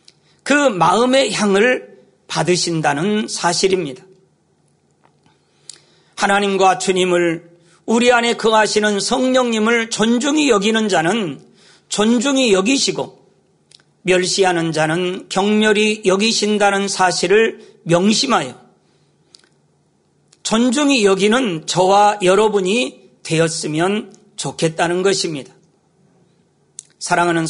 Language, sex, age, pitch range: Korean, male, 40-59, 180-220 Hz